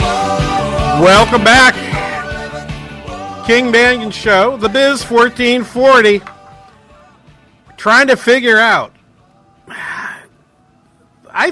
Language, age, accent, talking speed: English, 50-69, American, 75 wpm